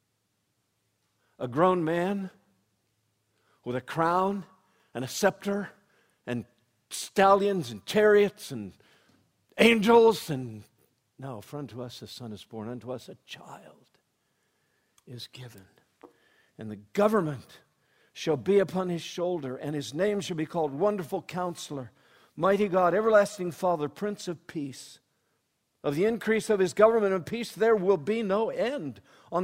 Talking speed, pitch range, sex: 135 wpm, 130-200 Hz, male